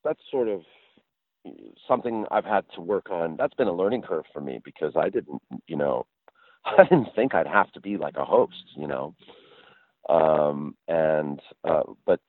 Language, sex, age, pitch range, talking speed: English, male, 50-69, 80-125 Hz, 180 wpm